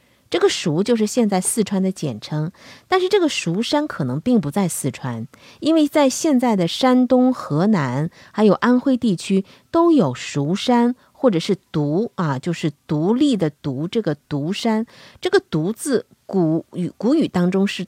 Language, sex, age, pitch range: Chinese, female, 50-69, 150-235 Hz